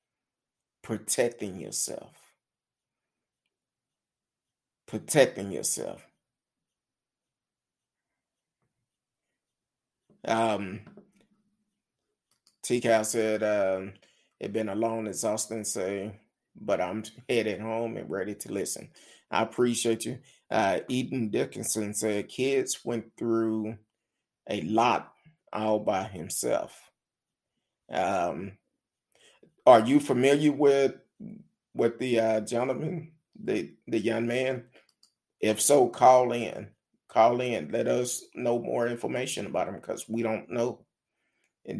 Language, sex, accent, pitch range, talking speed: English, male, American, 110-130 Hz, 100 wpm